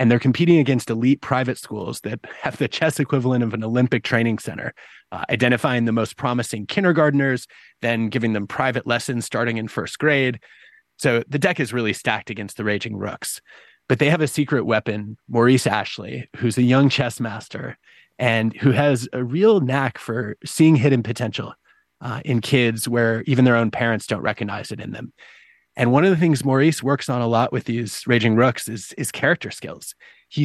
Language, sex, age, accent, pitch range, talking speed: English, male, 30-49, American, 115-140 Hz, 190 wpm